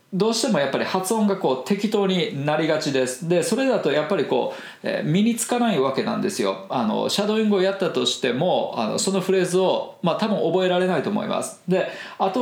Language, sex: Japanese, male